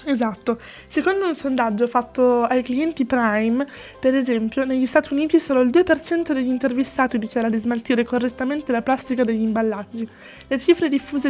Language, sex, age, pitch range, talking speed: Italian, female, 20-39, 235-285 Hz, 155 wpm